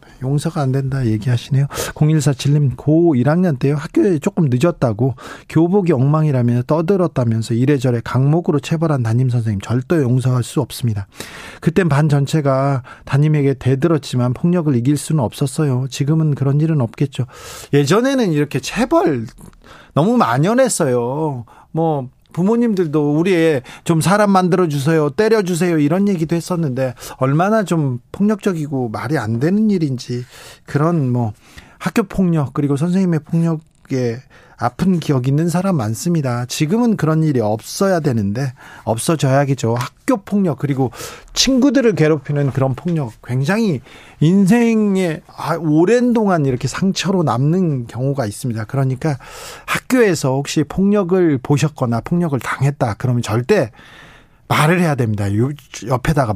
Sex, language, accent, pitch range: male, Korean, native, 130-170 Hz